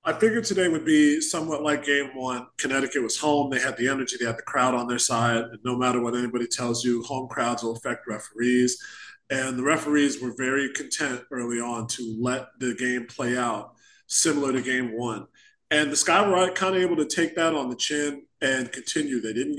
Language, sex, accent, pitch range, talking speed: English, male, American, 125-155 Hz, 210 wpm